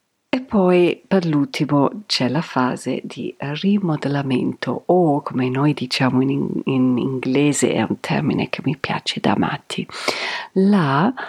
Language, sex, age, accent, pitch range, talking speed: Italian, female, 50-69, native, 140-195 Hz, 135 wpm